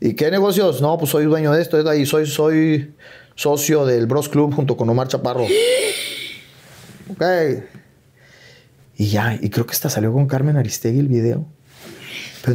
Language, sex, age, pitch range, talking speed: Spanish, male, 30-49, 120-155 Hz, 165 wpm